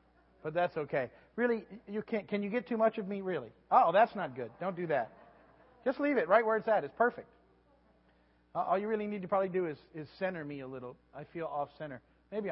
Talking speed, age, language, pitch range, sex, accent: 230 wpm, 50-69, English, 130-200 Hz, male, American